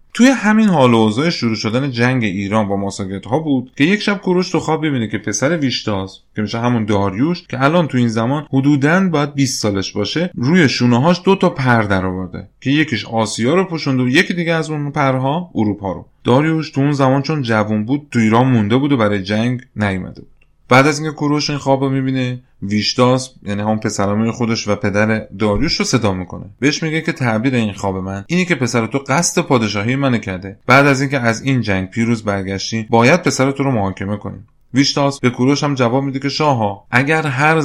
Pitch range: 105-145 Hz